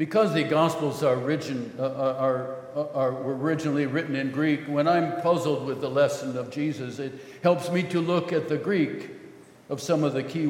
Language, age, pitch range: English, 60-79, 135-160 Hz